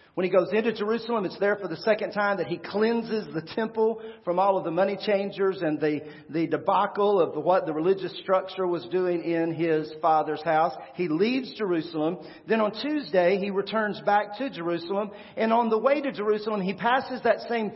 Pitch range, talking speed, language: 170-205 Hz, 195 wpm, English